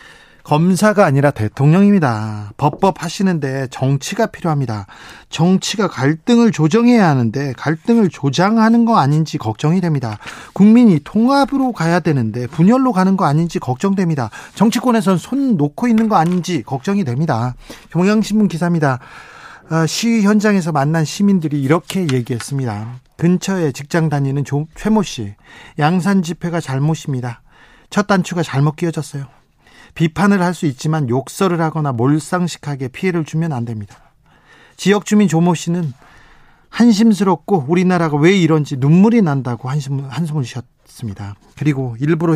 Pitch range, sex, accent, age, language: 135-185 Hz, male, native, 40-59, Korean